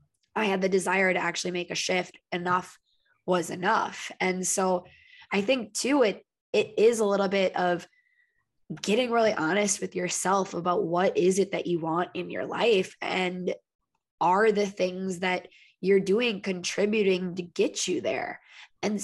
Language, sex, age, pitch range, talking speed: English, female, 20-39, 180-220 Hz, 165 wpm